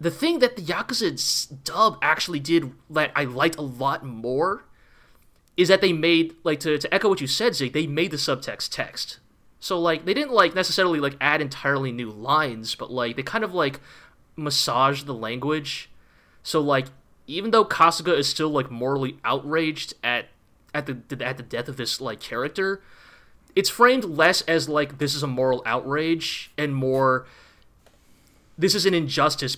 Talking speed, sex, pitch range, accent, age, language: 175 wpm, male, 130-160 Hz, American, 20-39, English